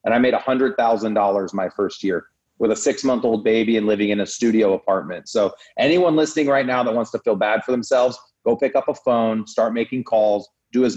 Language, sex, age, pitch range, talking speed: English, male, 30-49, 110-130 Hz, 215 wpm